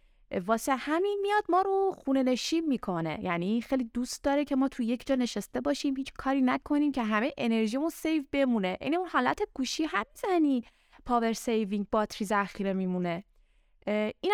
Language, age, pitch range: Persian, 20-39, 205-285 Hz